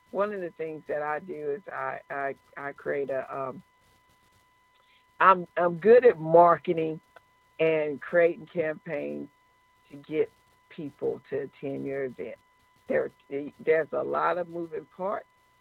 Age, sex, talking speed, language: 50-69, female, 140 wpm, English